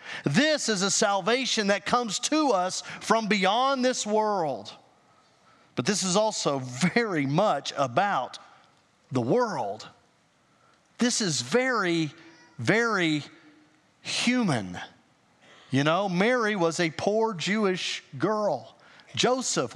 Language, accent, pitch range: English, American, 160-225 Hz